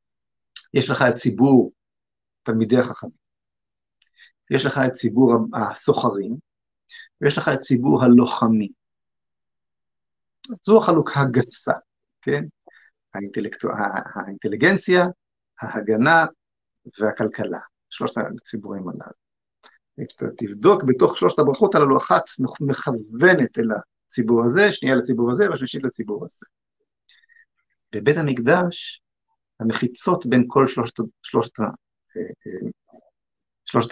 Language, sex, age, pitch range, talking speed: Hebrew, male, 50-69, 110-140 Hz, 90 wpm